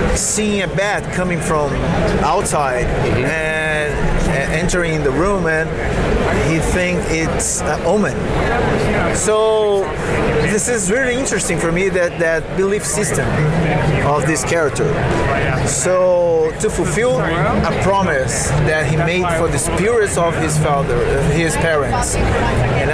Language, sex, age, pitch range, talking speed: English, male, 30-49, 155-180 Hz, 125 wpm